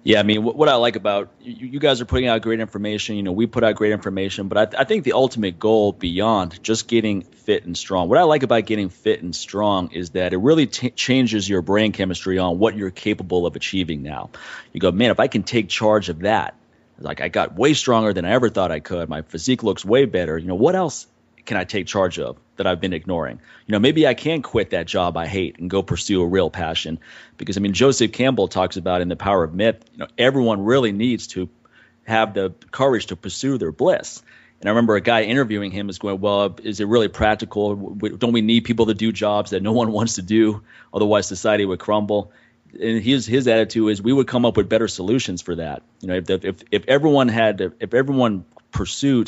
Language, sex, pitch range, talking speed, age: English, male, 95-115 Hz, 235 wpm, 30-49